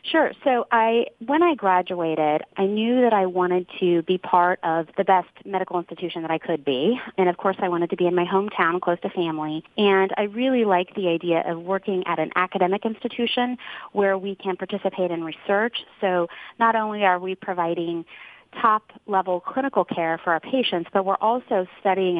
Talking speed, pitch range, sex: 190 wpm, 165-205 Hz, female